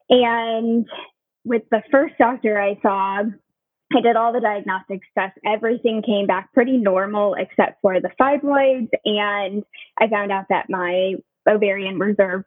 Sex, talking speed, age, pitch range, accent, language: female, 145 wpm, 10-29, 195-250 Hz, American, English